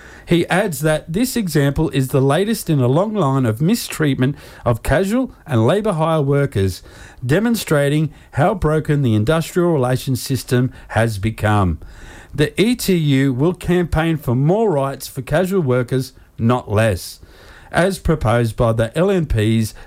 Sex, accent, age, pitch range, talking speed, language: male, Australian, 50-69, 110-160 Hz, 140 wpm, English